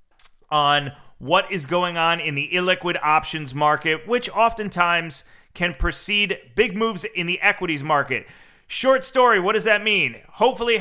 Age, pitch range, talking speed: 30-49, 155-200 Hz, 155 wpm